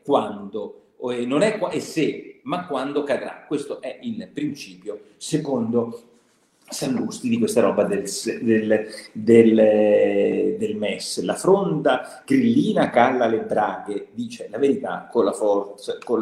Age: 50-69